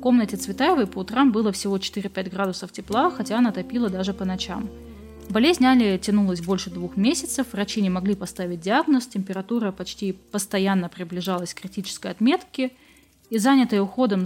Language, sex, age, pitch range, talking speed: Russian, female, 20-39, 190-245 Hz, 155 wpm